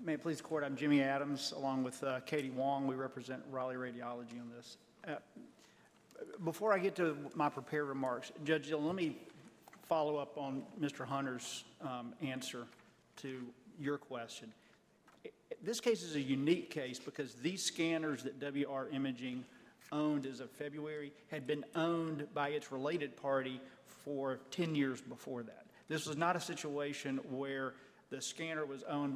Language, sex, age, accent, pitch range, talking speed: English, male, 40-59, American, 135-155 Hz, 160 wpm